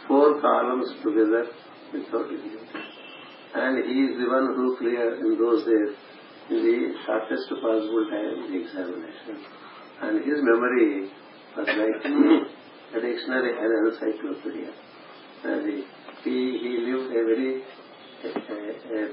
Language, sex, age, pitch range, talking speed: English, male, 50-69, 115-150 Hz, 120 wpm